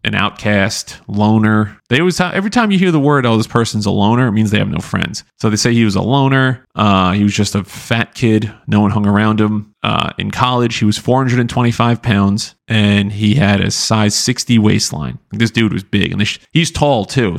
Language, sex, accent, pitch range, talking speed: English, male, American, 105-125 Hz, 230 wpm